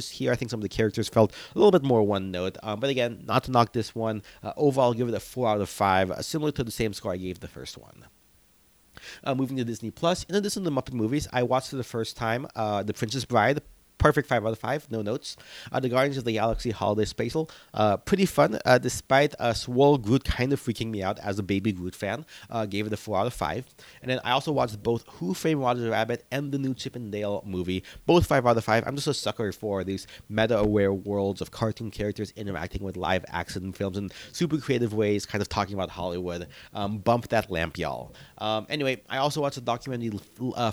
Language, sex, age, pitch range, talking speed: English, male, 30-49, 100-130 Hz, 235 wpm